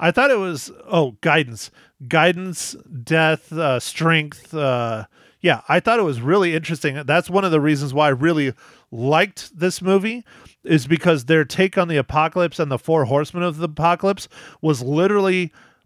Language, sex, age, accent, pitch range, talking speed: English, male, 40-59, American, 135-170 Hz, 170 wpm